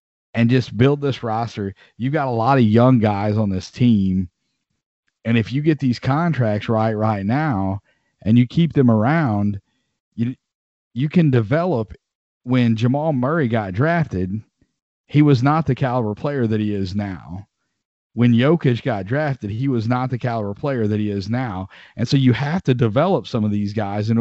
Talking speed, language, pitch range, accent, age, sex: 180 wpm, English, 110-135 Hz, American, 40-59, male